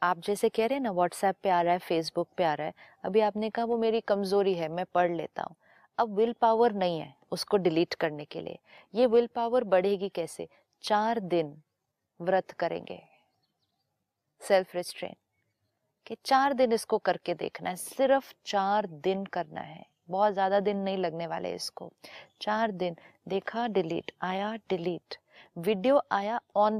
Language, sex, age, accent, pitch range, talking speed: Hindi, female, 30-49, native, 175-220 Hz, 165 wpm